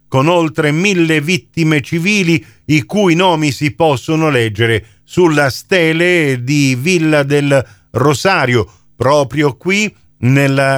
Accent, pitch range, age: native, 135-180 Hz, 50-69